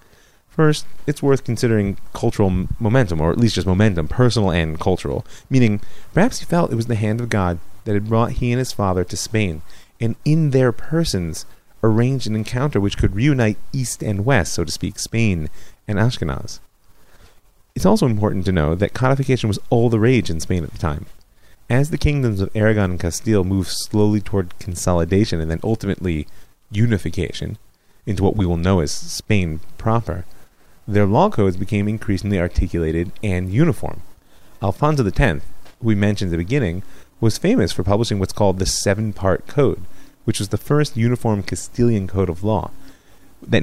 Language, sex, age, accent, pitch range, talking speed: English, male, 30-49, American, 90-115 Hz, 175 wpm